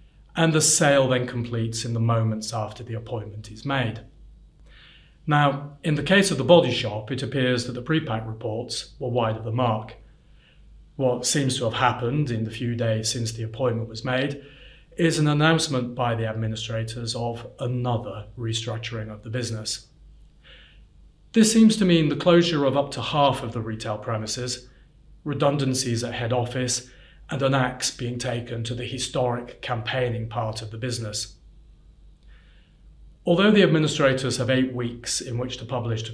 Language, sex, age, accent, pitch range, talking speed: English, male, 30-49, British, 115-140 Hz, 170 wpm